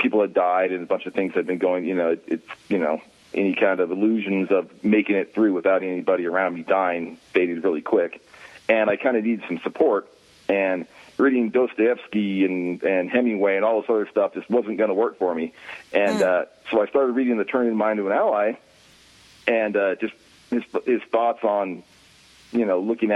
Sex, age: male, 40-59